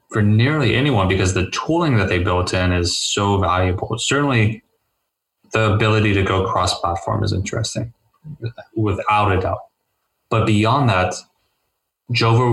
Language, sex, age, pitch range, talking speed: English, male, 20-39, 90-110 Hz, 135 wpm